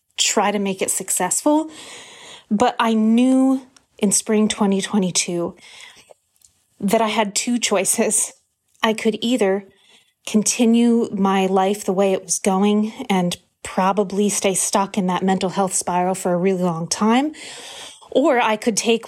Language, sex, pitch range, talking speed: English, female, 195-230 Hz, 140 wpm